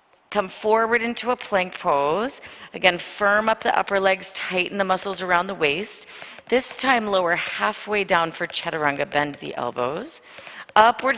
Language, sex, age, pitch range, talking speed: English, female, 30-49, 155-205 Hz, 155 wpm